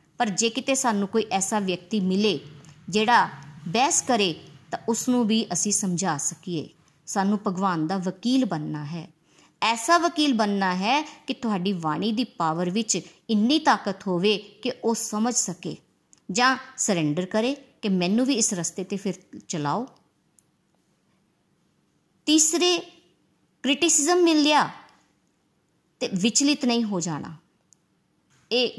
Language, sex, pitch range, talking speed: Punjabi, male, 180-240 Hz, 110 wpm